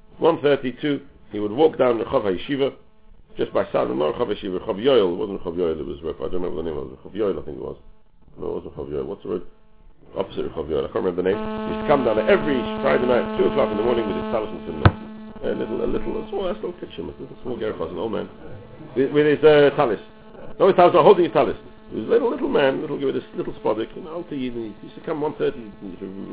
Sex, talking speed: male, 275 wpm